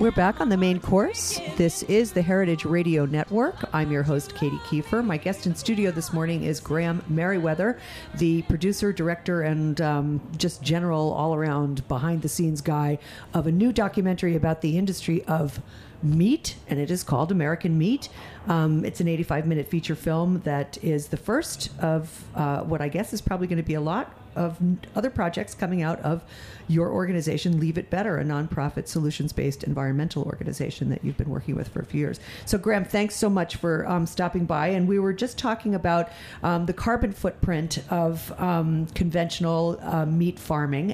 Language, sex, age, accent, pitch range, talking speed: English, female, 50-69, American, 155-190 Hz, 180 wpm